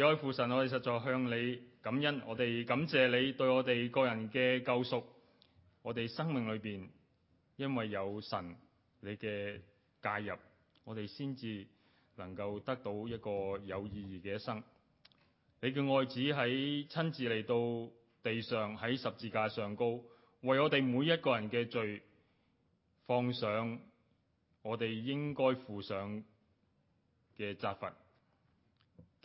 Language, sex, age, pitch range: Chinese, male, 20-39, 100-125 Hz